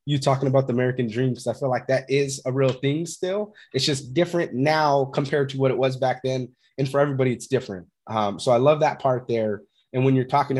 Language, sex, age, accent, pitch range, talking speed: English, male, 20-39, American, 115-140 Hz, 245 wpm